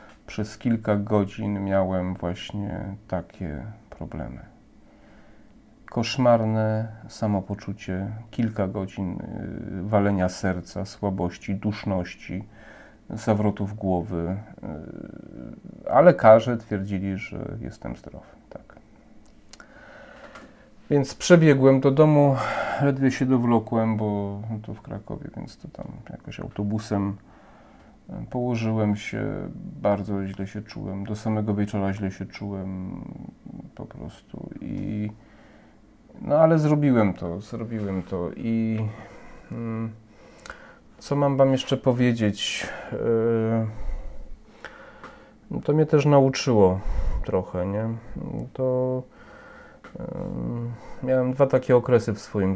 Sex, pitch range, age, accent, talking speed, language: male, 100-120 Hz, 40-59, native, 95 wpm, Polish